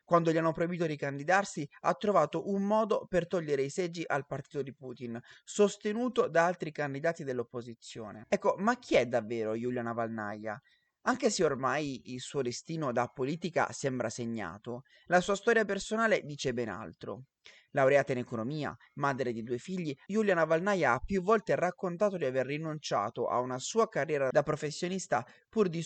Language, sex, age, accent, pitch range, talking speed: Italian, male, 30-49, native, 125-180 Hz, 165 wpm